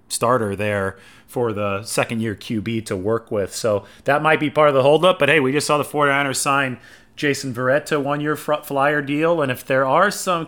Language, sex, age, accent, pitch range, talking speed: English, male, 30-49, American, 110-140 Hz, 220 wpm